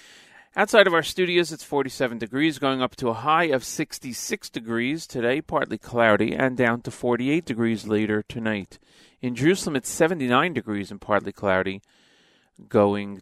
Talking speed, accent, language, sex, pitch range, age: 155 wpm, American, English, male, 100-140 Hz, 40-59